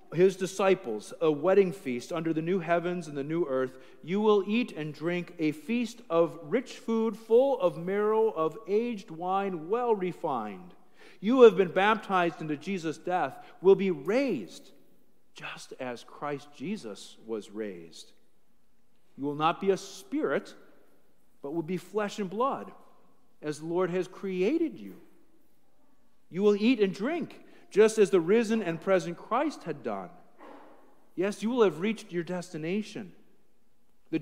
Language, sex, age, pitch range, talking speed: English, male, 50-69, 140-200 Hz, 155 wpm